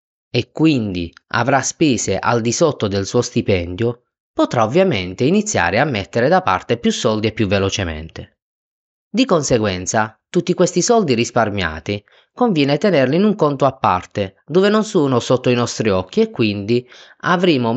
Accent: native